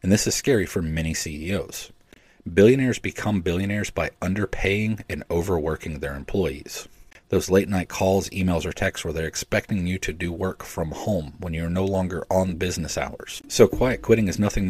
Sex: male